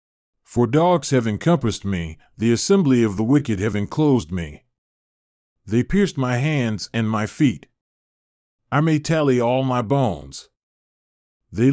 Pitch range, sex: 105-145 Hz, male